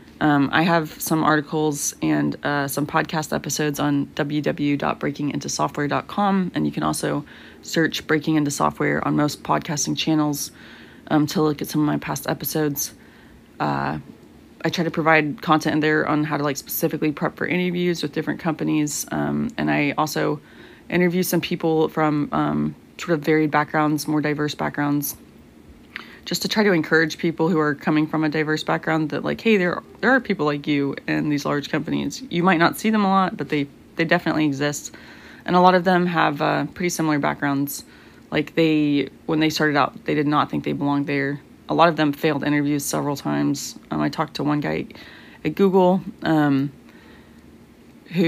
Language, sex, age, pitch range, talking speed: English, female, 20-39, 145-160 Hz, 185 wpm